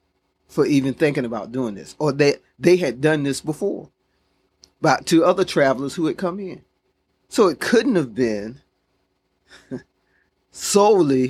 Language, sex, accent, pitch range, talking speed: English, male, American, 95-140 Hz, 145 wpm